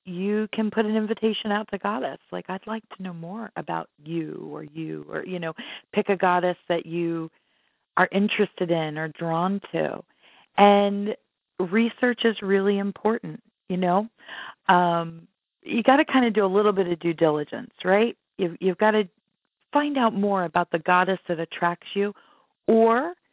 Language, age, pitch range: English, 40-59, 165-210 Hz